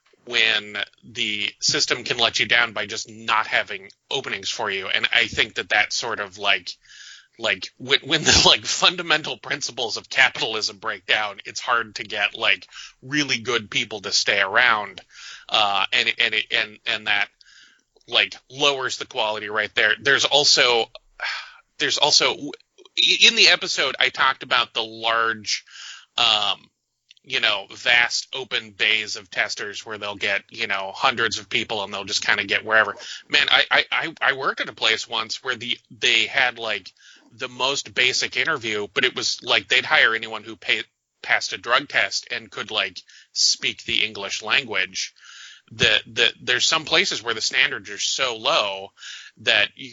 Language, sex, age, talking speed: English, male, 30-49, 170 wpm